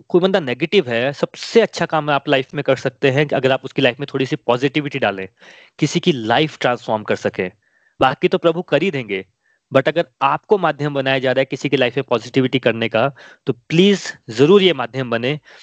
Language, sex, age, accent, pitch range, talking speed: Hindi, male, 30-49, native, 130-165 Hz, 215 wpm